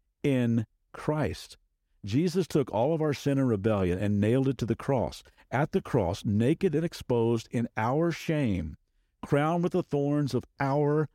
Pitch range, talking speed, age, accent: 95-145 Hz, 165 wpm, 50-69, American